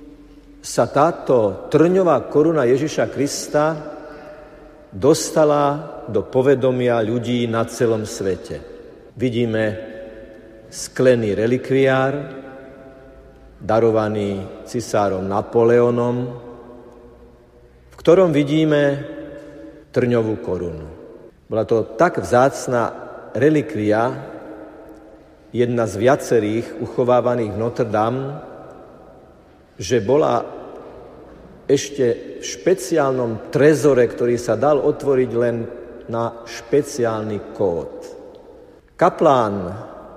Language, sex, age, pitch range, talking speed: Slovak, male, 50-69, 110-145 Hz, 75 wpm